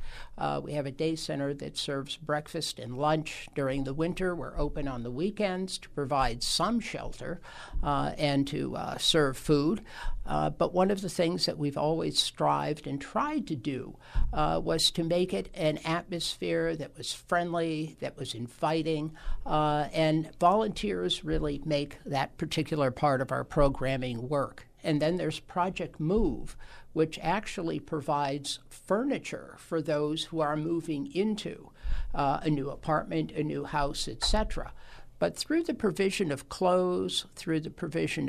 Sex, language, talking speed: male, English, 155 wpm